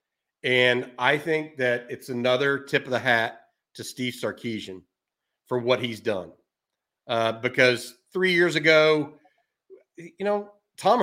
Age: 40-59